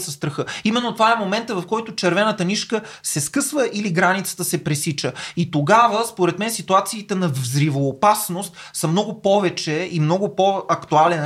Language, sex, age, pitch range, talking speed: Bulgarian, male, 30-49, 155-210 Hz, 160 wpm